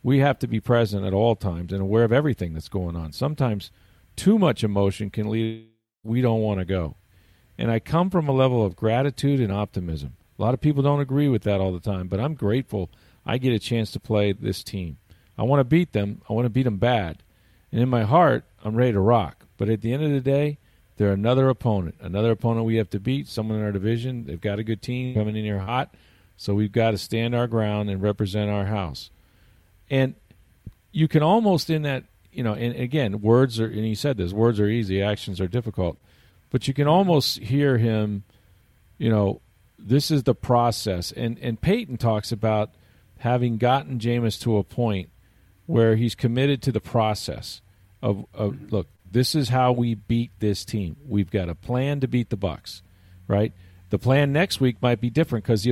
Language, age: English, 40-59